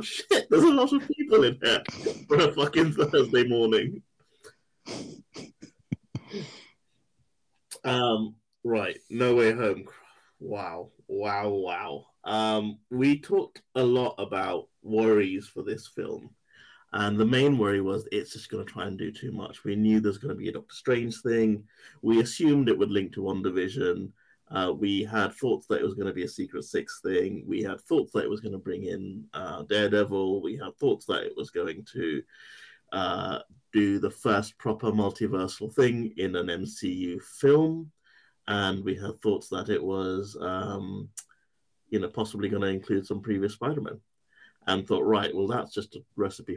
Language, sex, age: English, male, 20-39